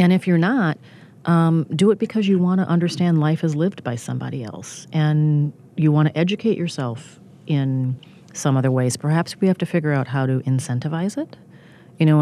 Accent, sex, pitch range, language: American, female, 135-165 Hz, English